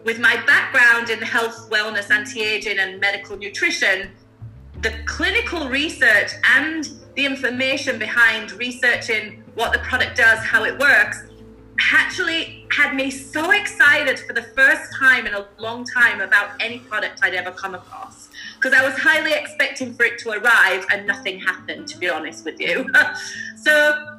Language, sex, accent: English, female, British